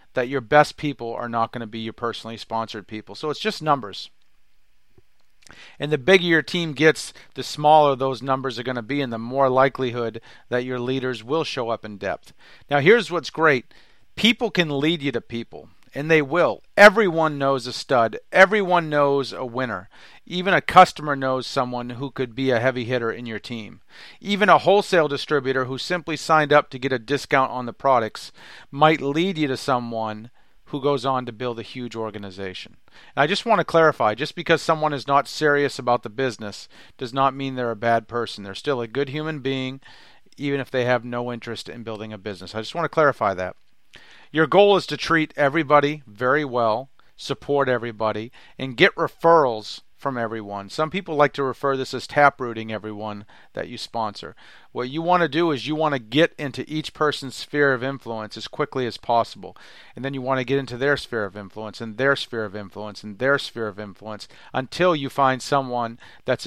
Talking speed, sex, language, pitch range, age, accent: 200 wpm, male, English, 115-150 Hz, 40-59, American